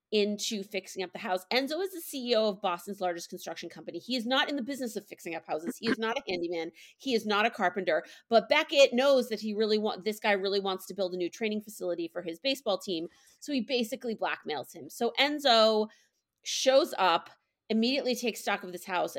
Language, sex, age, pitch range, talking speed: English, female, 30-49, 180-240 Hz, 220 wpm